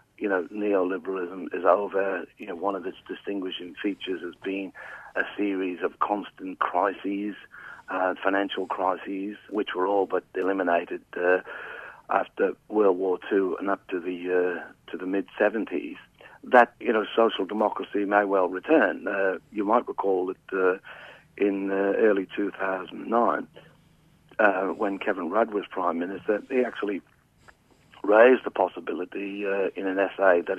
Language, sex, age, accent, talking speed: English, male, 60-79, British, 145 wpm